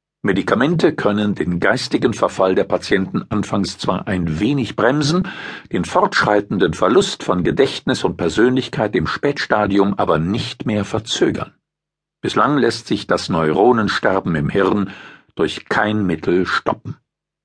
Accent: German